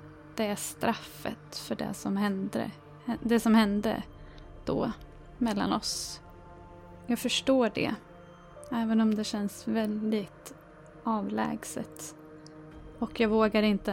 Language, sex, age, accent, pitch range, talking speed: Swedish, female, 20-39, native, 195-225 Hz, 110 wpm